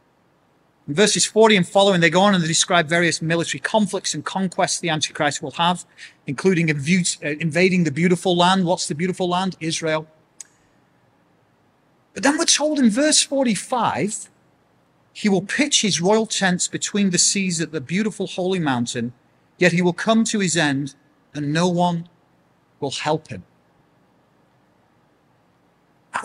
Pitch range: 160-220 Hz